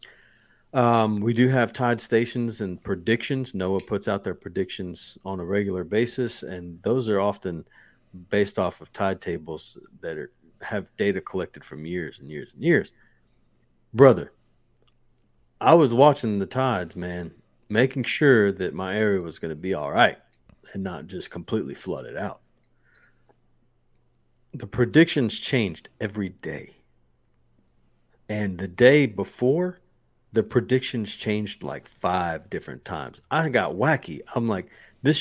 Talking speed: 140 wpm